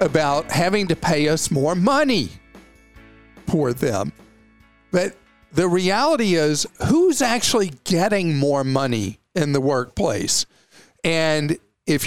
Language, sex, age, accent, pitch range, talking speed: English, male, 50-69, American, 145-200 Hz, 115 wpm